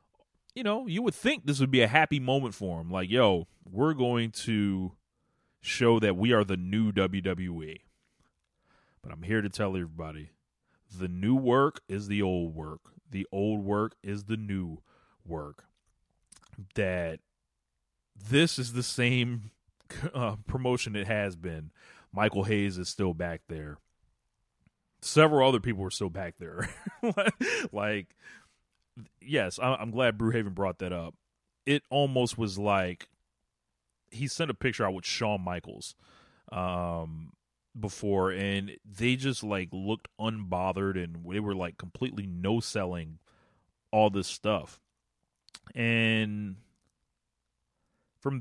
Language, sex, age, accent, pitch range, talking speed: English, male, 30-49, American, 90-115 Hz, 135 wpm